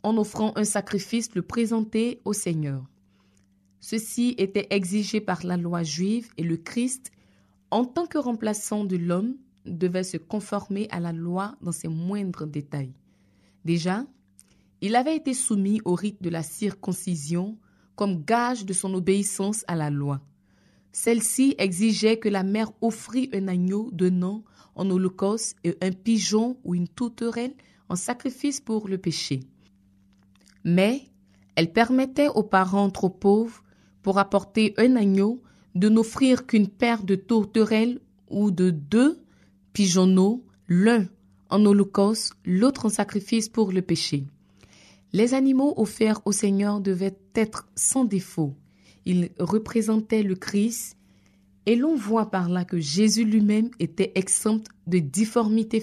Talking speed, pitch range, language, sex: 140 wpm, 175-220 Hz, French, female